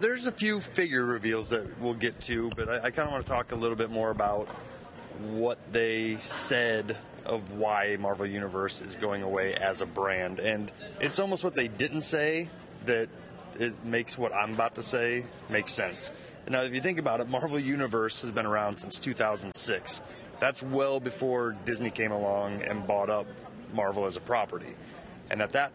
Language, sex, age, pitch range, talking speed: English, male, 30-49, 105-130 Hz, 185 wpm